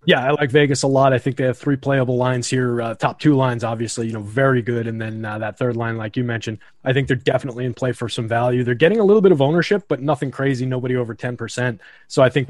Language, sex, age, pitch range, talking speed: English, male, 20-39, 120-140 Hz, 280 wpm